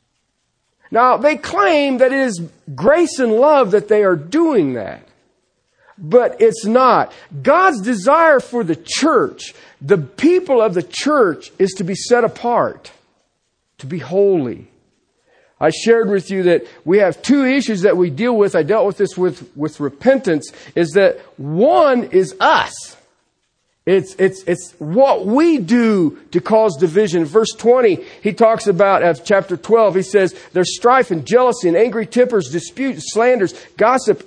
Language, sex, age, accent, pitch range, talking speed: English, male, 50-69, American, 190-290 Hz, 155 wpm